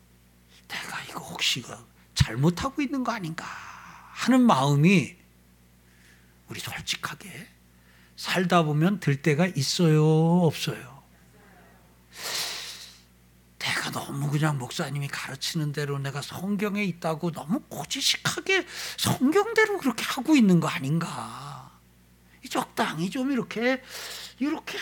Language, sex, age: Korean, male, 60-79